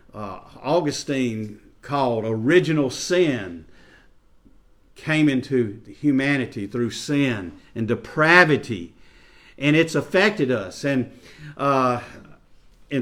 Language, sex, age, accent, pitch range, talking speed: English, male, 50-69, American, 120-165 Hz, 90 wpm